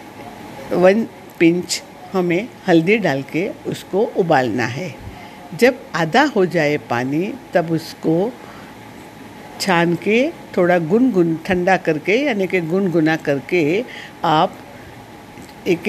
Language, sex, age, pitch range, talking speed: Hindi, female, 60-79, 175-225 Hz, 110 wpm